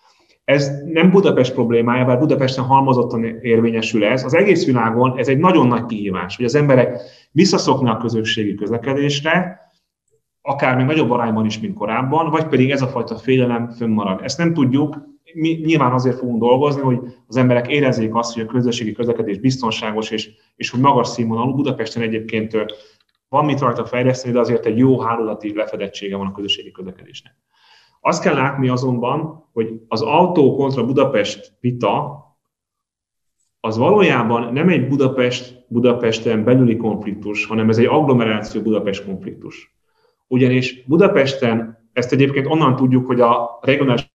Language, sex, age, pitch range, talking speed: Hungarian, male, 30-49, 115-135 Hz, 145 wpm